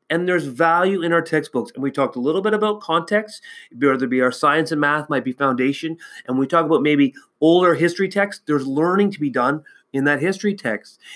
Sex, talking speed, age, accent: male, 220 wpm, 30-49, American